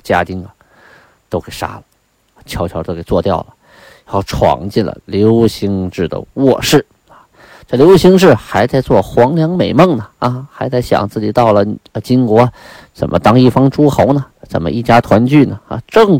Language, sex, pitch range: Chinese, male, 100-135 Hz